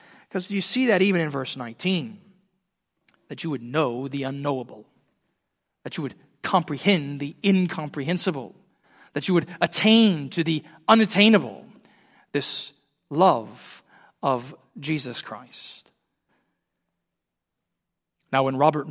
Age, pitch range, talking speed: 40-59, 130-170 Hz, 110 wpm